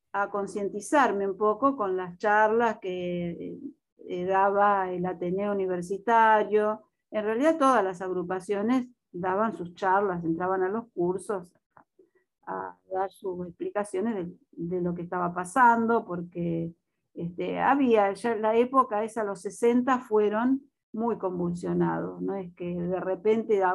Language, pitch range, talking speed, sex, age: Spanish, 180-235 Hz, 130 wpm, female, 50-69